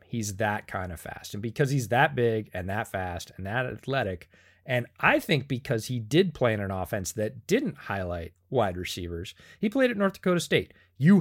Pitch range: 95-130 Hz